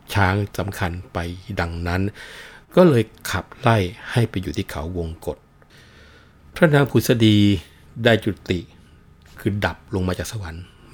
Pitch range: 85-110 Hz